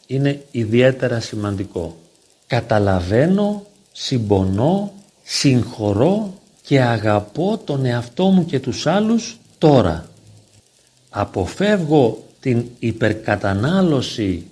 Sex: male